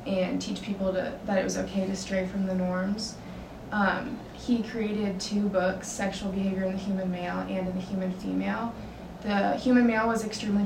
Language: English